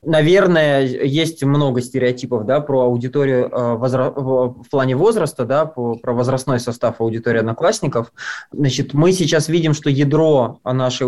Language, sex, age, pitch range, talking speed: Russian, male, 20-39, 125-145 Hz, 125 wpm